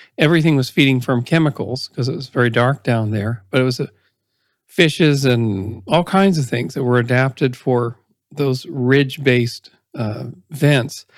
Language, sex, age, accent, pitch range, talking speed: English, male, 40-59, American, 125-155 Hz, 160 wpm